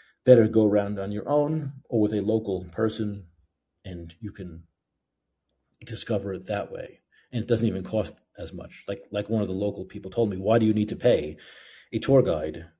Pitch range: 95-115 Hz